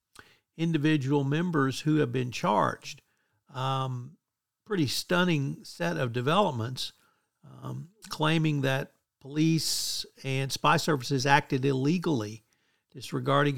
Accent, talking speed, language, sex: American, 95 wpm, English, male